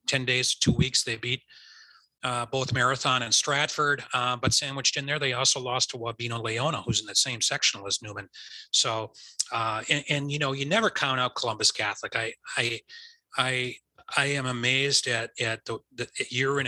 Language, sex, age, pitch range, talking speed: English, male, 30-49, 115-140 Hz, 195 wpm